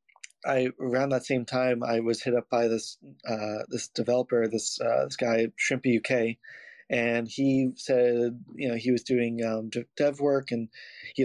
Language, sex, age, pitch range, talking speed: English, male, 20-39, 115-130 Hz, 175 wpm